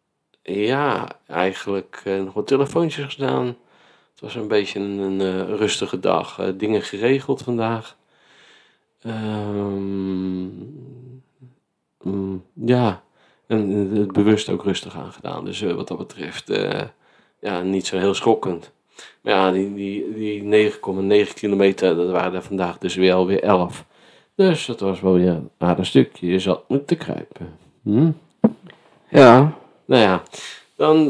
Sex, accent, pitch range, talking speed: male, Dutch, 95-105 Hz, 140 wpm